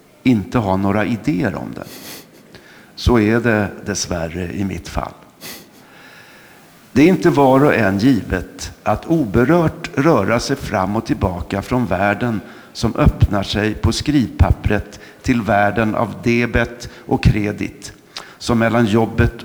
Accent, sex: native, male